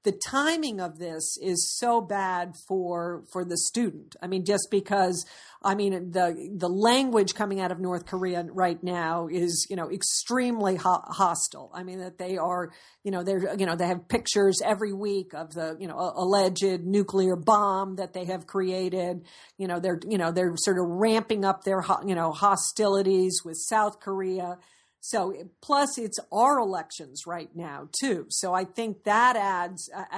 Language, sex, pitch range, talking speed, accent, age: English, female, 180-200 Hz, 175 wpm, American, 50-69